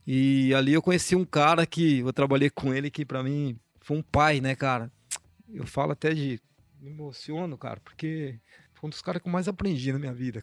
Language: Portuguese